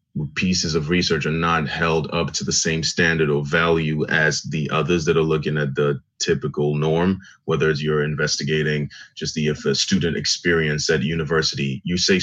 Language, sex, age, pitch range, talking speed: English, male, 30-49, 75-90 Hz, 185 wpm